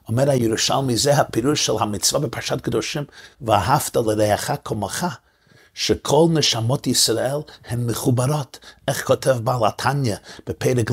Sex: male